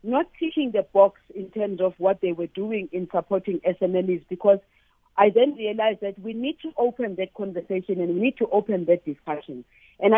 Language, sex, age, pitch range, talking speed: English, female, 50-69, 185-230 Hz, 195 wpm